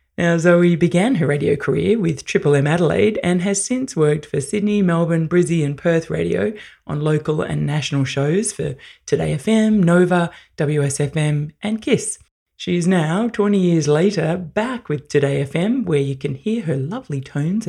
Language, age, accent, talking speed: English, 20-39, Australian, 170 wpm